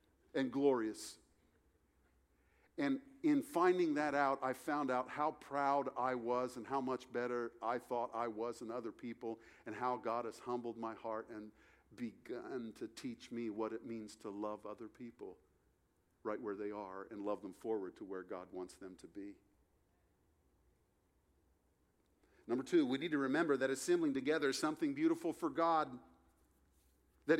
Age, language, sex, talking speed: 50-69, English, male, 160 wpm